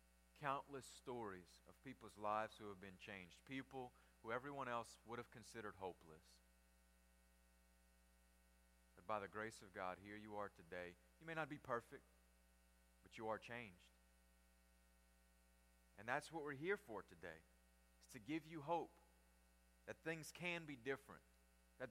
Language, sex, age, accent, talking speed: English, male, 30-49, American, 150 wpm